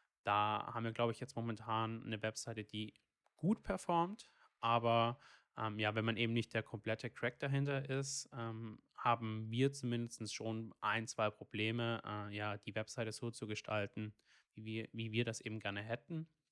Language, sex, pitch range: German, male, 105-120 Hz